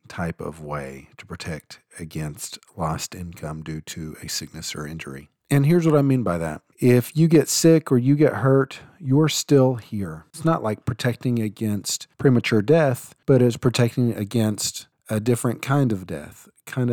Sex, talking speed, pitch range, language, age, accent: male, 175 wpm, 95-125 Hz, English, 40-59, American